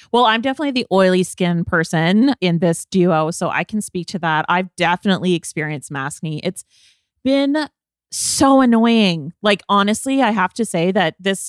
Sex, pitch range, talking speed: female, 175-210 Hz, 165 wpm